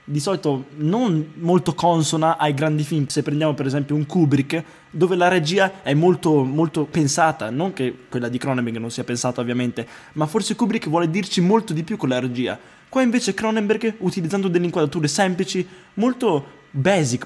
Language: Italian